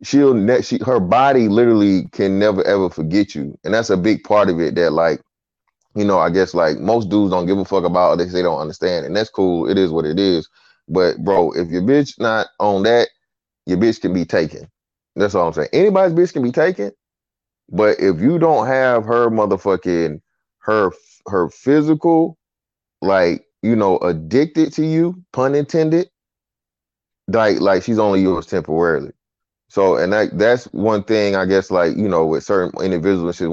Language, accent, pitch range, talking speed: English, American, 95-135 Hz, 190 wpm